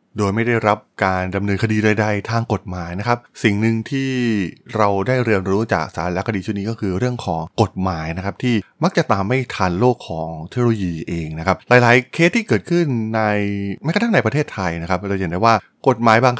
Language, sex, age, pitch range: Thai, male, 20-39, 95-130 Hz